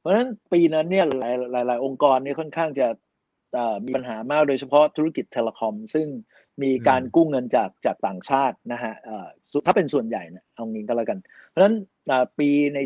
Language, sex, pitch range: Thai, male, 120-160 Hz